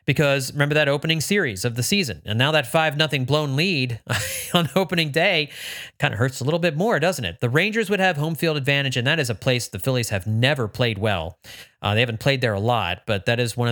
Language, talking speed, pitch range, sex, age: English, 245 wpm, 120-155 Hz, male, 30-49